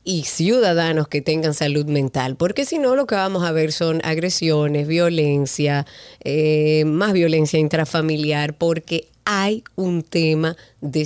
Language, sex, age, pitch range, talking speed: Spanish, female, 30-49, 155-205 Hz, 140 wpm